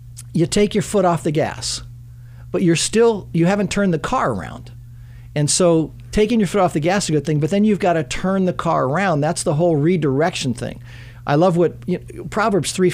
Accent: American